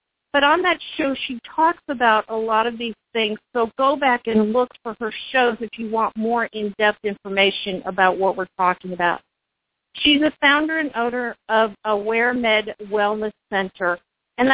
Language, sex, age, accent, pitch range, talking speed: English, female, 50-69, American, 210-245 Hz, 170 wpm